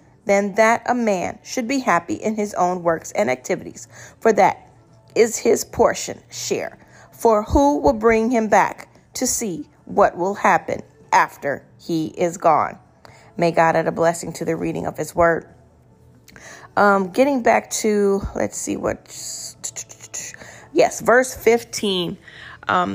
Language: English